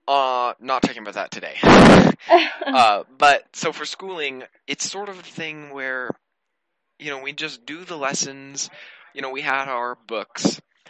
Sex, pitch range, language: male, 130-175 Hz, English